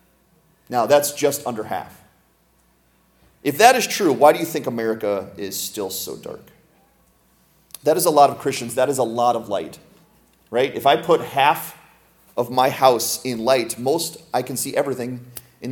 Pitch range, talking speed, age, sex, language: 115-150 Hz, 175 wpm, 30-49, male, English